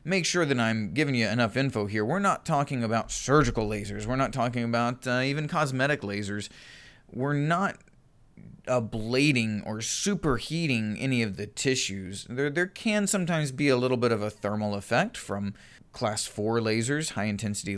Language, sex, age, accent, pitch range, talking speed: English, male, 30-49, American, 105-140 Hz, 165 wpm